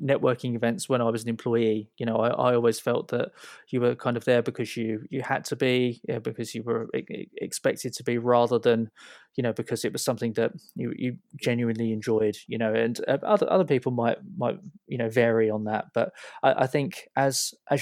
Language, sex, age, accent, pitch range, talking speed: English, male, 20-39, British, 115-130 Hz, 210 wpm